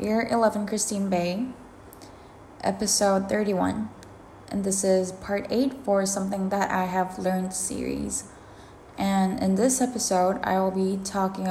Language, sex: English, female